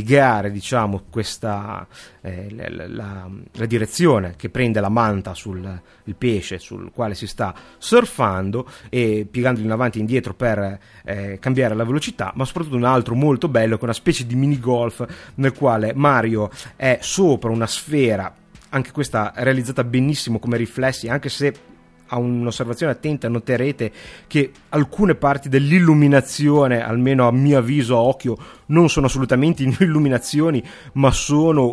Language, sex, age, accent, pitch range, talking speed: Italian, male, 30-49, native, 115-150 Hz, 150 wpm